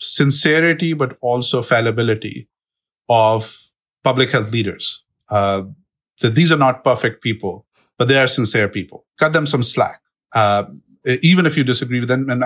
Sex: male